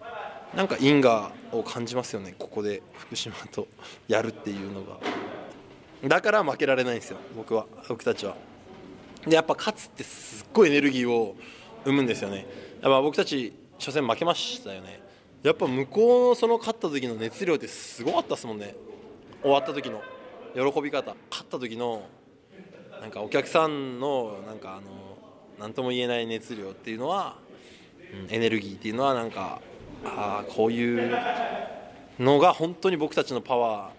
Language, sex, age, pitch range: English, male, 20-39, 110-145 Hz